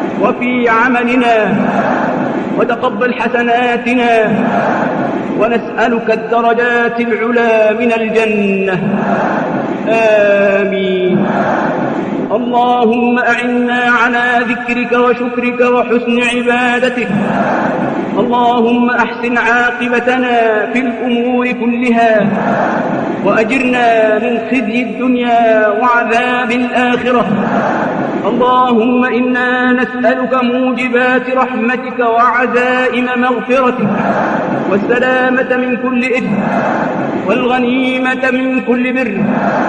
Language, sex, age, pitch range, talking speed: Arabic, male, 50-69, 225-250 Hz, 65 wpm